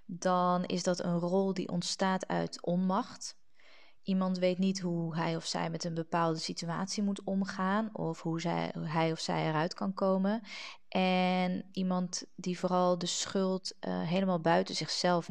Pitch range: 165-190 Hz